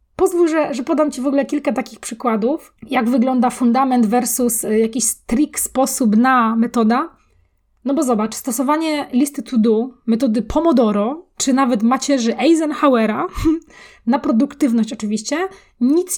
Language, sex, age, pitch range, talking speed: Polish, female, 20-39, 235-285 Hz, 135 wpm